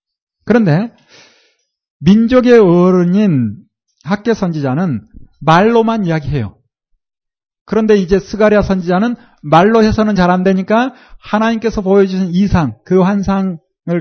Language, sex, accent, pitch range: Korean, male, native, 170-230 Hz